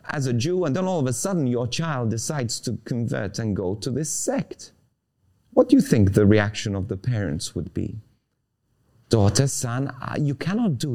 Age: 30-49